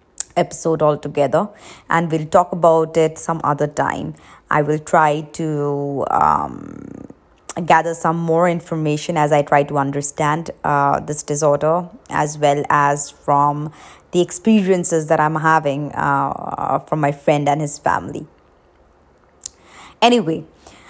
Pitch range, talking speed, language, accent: 150-175 Hz, 125 wpm, English, Indian